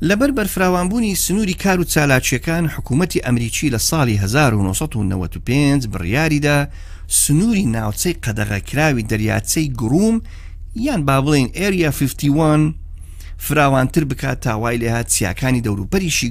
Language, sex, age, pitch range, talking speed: Persian, male, 50-69, 90-150 Hz, 95 wpm